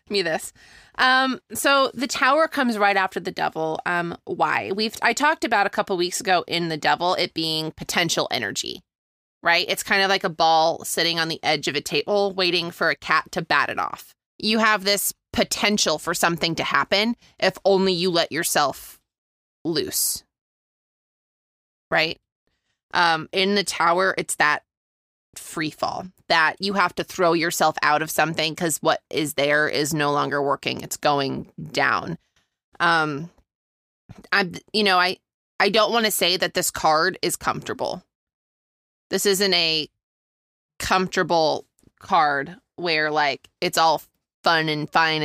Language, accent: English, American